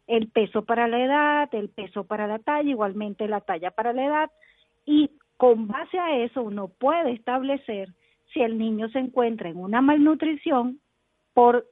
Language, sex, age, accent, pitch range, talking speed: Spanish, female, 40-59, American, 220-280 Hz, 170 wpm